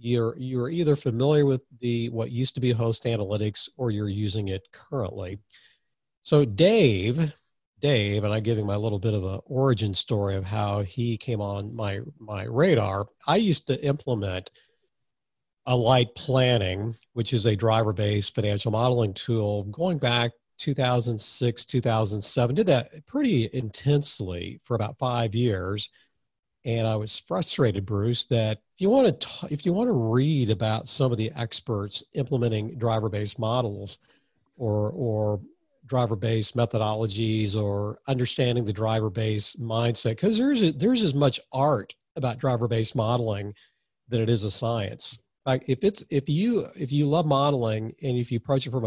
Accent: American